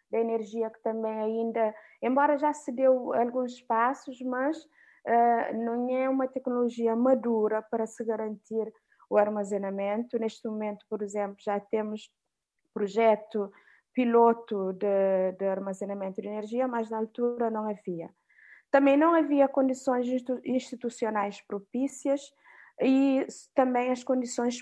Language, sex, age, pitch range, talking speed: Portuguese, female, 20-39, 220-265 Hz, 120 wpm